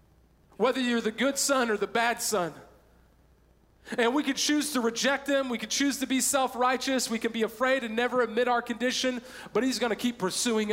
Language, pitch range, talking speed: English, 160-220 Hz, 205 wpm